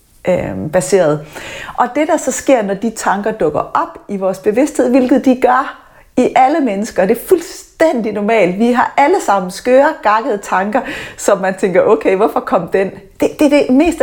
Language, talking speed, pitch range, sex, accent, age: Danish, 175 wpm, 205-265 Hz, female, native, 30-49